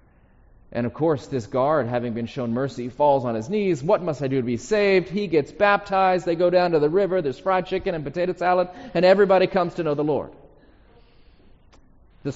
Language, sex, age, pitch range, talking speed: English, male, 30-49, 130-185 Hz, 210 wpm